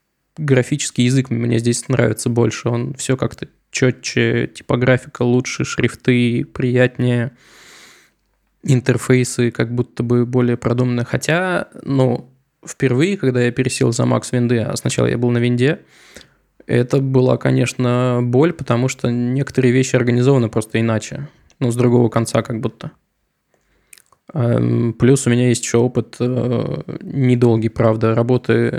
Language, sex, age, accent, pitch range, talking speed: Russian, male, 20-39, native, 120-130 Hz, 125 wpm